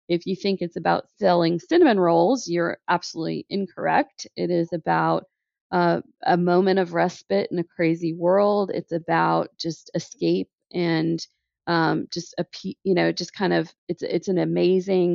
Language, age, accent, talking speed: English, 40-59, American, 160 wpm